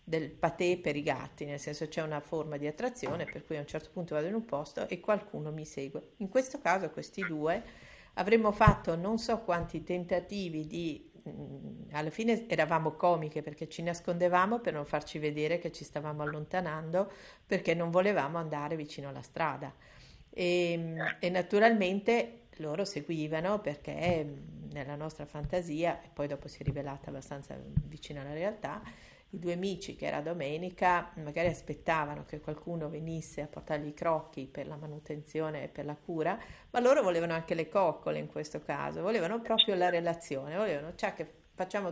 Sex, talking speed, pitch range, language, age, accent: female, 170 wpm, 155-195 Hz, Italian, 50-69, native